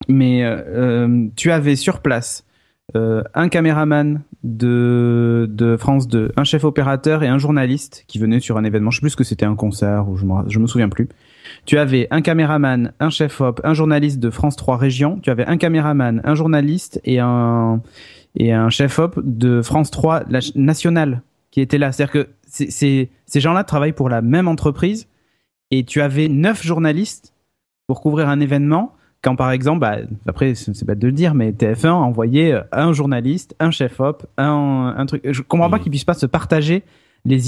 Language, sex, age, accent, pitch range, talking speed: French, male, 30-49, French, 120-155 Hz, 195 wpm